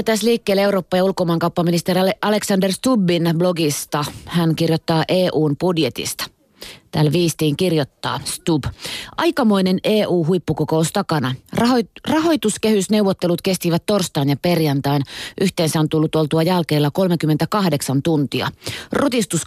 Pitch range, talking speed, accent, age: 155-190 Hz, 95 wpm, native, 30-49